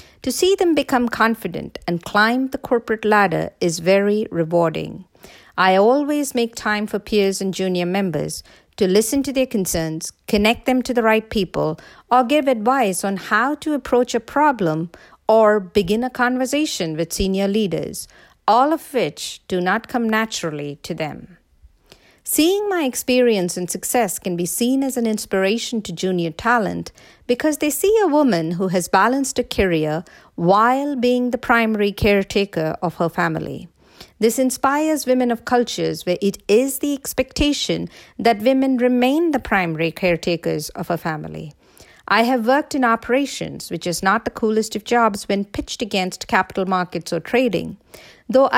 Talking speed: 160 wpm